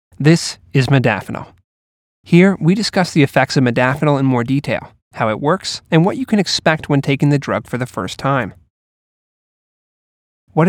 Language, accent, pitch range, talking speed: English, American, 120-160 Hz, 170 wpm